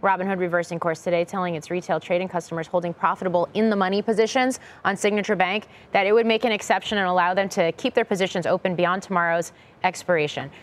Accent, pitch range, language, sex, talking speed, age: American, 180-235 Hz, English, female, 185 wpm, 30-49